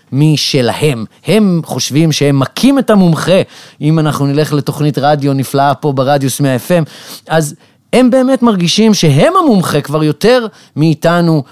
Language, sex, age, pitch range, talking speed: Hebrew, male, 30-49, 135-200 Hz, 130 wpm